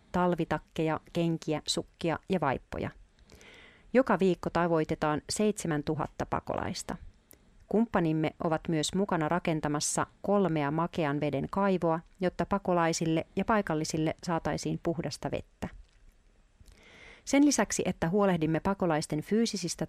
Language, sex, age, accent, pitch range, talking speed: Finnish, female, 40-59, native, 155-190 Hz, 95 wpm